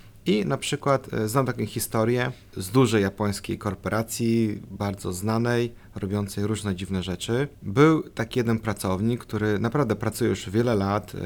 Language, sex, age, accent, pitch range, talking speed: Polish, male, 30-49, native, 105-135 Hz, 140 wpm